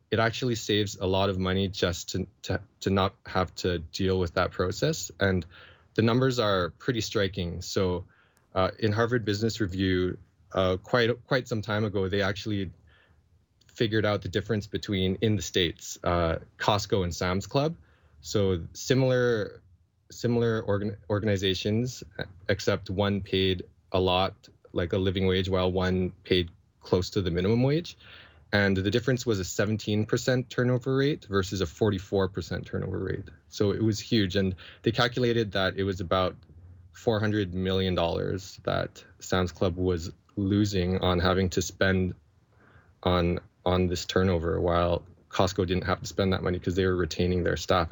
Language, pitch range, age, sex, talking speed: English, 90-105 Hz, 20-39, male, 160 wpm